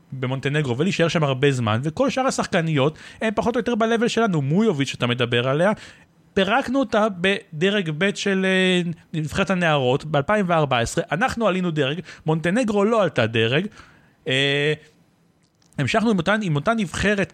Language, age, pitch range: Hebrew, 30-49, 145-205 Hz